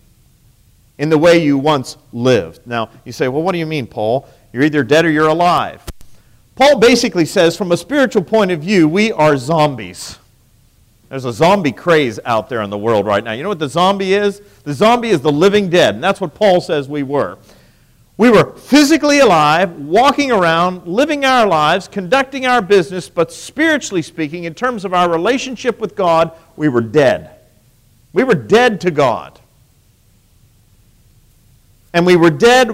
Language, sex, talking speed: English, male, 180 wpm